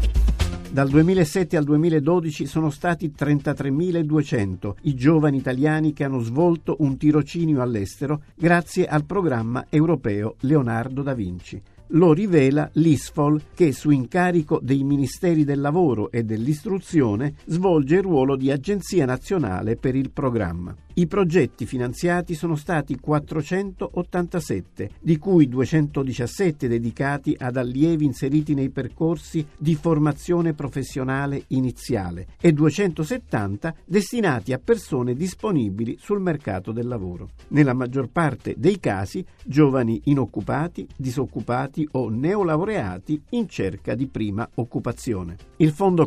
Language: Italian